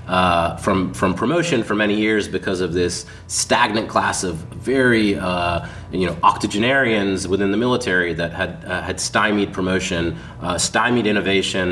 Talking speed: 155 wpm